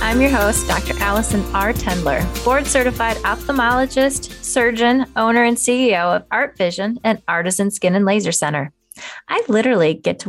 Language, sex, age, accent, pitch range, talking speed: English, female, 20-39, American, 180-250 Hz, 150 wpm